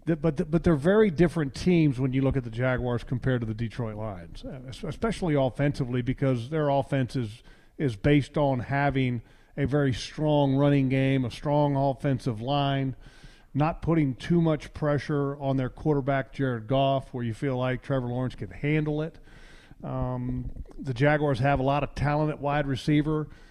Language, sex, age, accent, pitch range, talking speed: English, male, 40-59, American, 130-150 Hz, 165 wpm